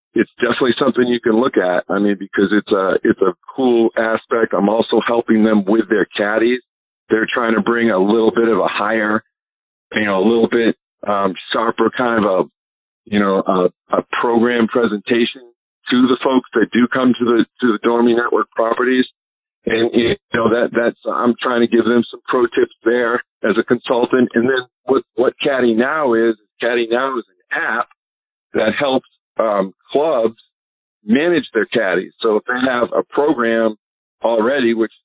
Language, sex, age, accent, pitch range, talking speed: English, male, 50-69, American, 110-120 Hz, 180 wpm